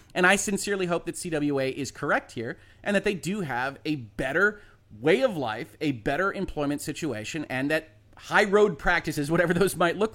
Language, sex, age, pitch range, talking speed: English, male, 30-49, 140-190 Hz, 190 wpm